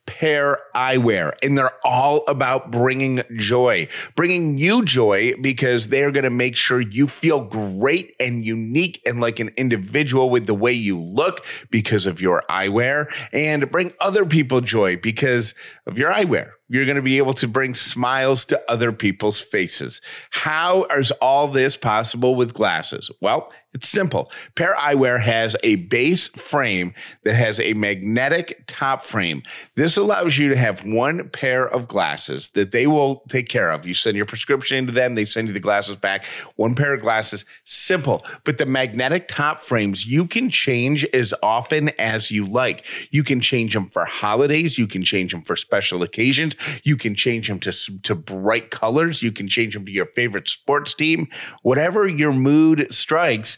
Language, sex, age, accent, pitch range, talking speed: English, male, 30-49, American, 110-145 Hz, 175 wpm